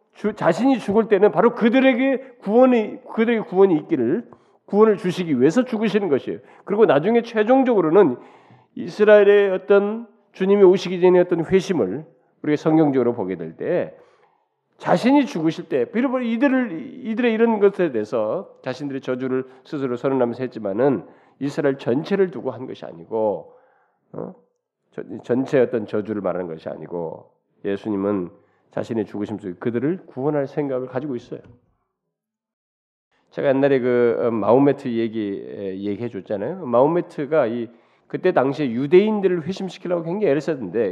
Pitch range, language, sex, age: 130-215 Hz, Korean, male, 40-59